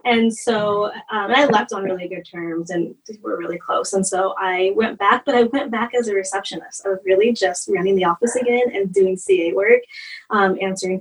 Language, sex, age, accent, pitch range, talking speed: English, female, 10-29, American, 190-235 Hz, 215 wpm